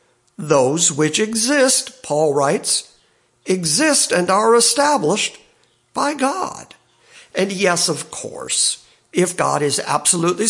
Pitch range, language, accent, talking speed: 150-190 Hz, English, American, 110 wpm